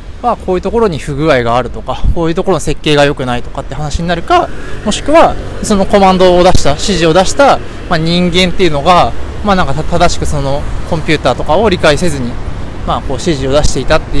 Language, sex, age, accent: Japanese, male, 20-39, native